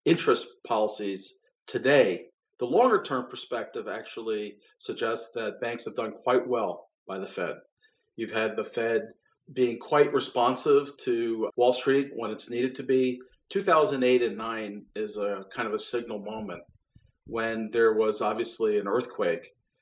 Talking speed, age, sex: 145 wpm, 40-59, male